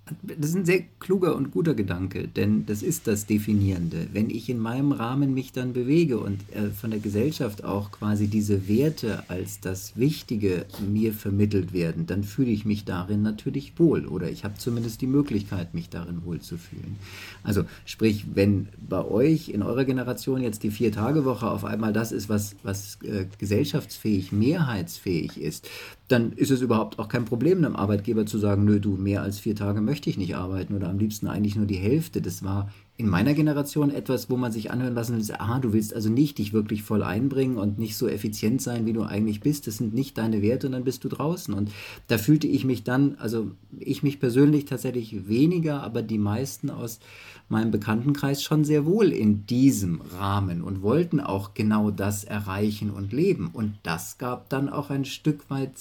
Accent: German